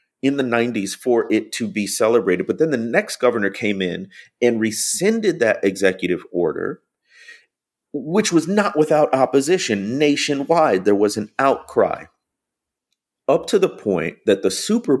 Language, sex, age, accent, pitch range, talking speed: English, male, 40-59, American, 95-145 Hz, 150 wpm